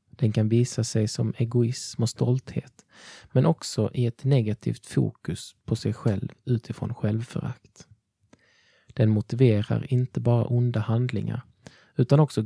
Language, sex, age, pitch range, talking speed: Swedish, male, 20-39, 110-130 Hz, 130 wpm